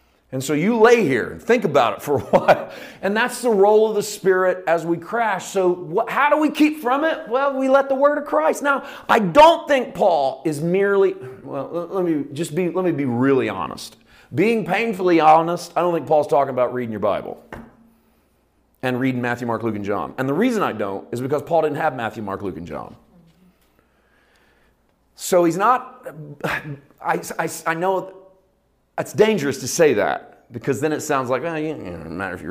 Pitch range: 120-190 Hz